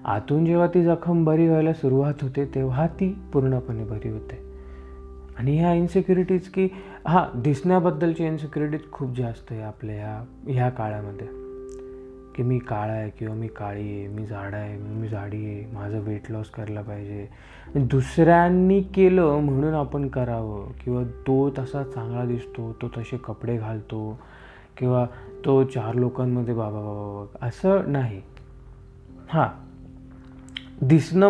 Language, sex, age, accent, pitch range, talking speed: Marathi, male, 20-39, native, 115-165 Hz, 130 wpm